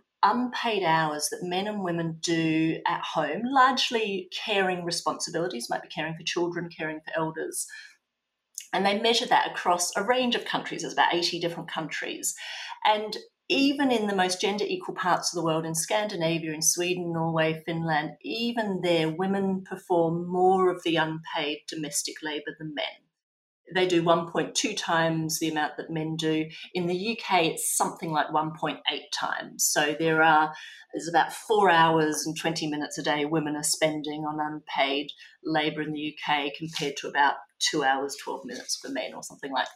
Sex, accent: female, Australian